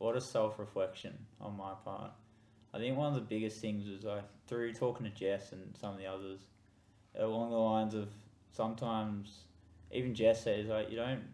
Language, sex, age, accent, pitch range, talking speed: English, male, 10-29, Australian, 95-110 Hz, 195 wpm